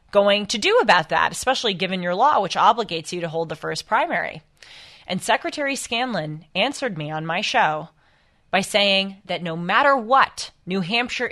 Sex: female